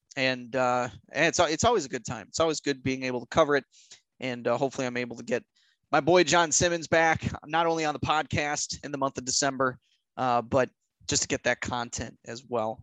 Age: 20-39